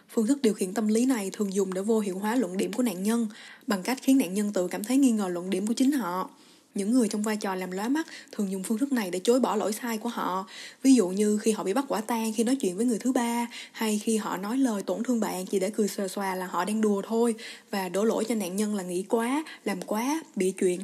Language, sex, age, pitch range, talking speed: Vietnamese, female, 20-39, 195-245 Hz, 290 wpm